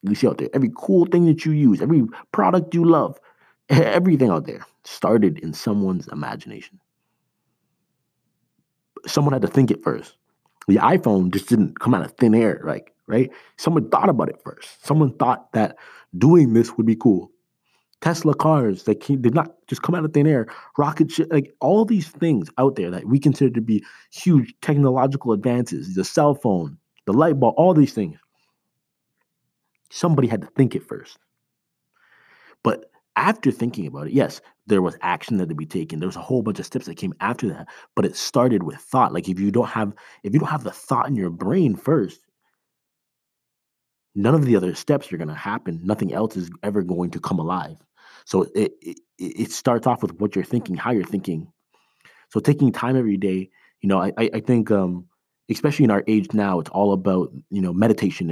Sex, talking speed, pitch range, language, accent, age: male, 195 wpm, 100-150 Hz, English, American, 20-39